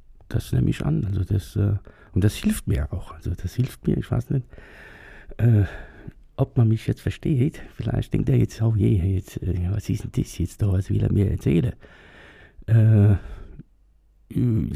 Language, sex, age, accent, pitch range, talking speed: German, male, 50-69, German, 95-125 Hz, 175 wpm